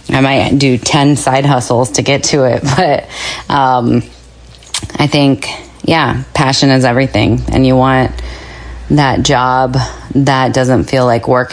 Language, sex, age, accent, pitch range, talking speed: English, female, 30-49, American, 125-145 Hz, 145 wpm